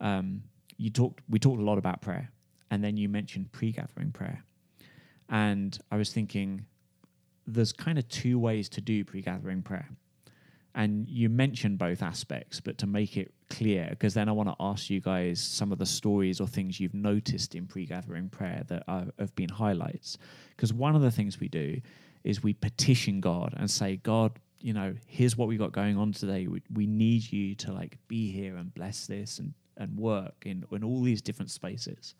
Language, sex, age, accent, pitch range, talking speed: English, male, 20-39, British, 95-115 Hz, 195 wpm